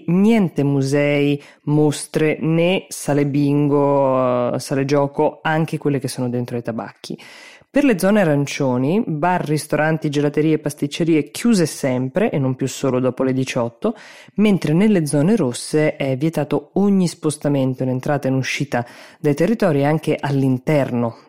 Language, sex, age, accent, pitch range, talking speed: Italian, female, 20-39, native, 130-155 Hz, 140 wpm